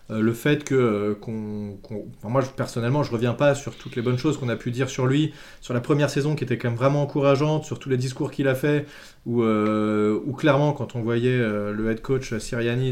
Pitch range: 115-145 Hz